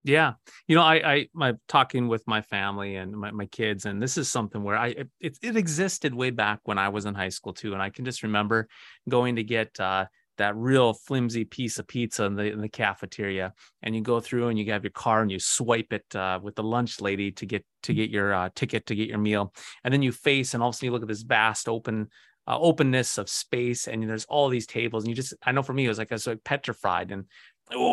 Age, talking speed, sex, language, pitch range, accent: 30-49, 260 wpm, male, English, 105-130 Hz, American